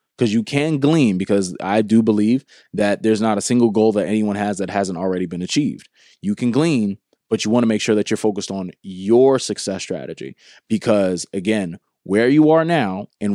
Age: 20-39